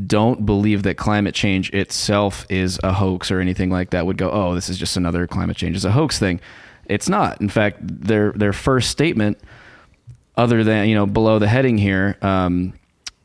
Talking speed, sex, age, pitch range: 195 wpm, male, 20-39, 90-110 Hz